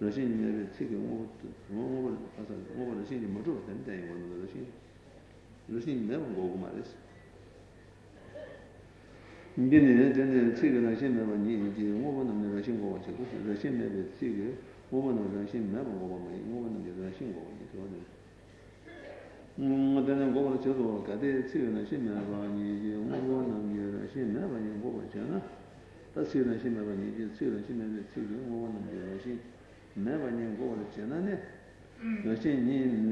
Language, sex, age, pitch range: Italian, male, 60-79, 100-125 Hz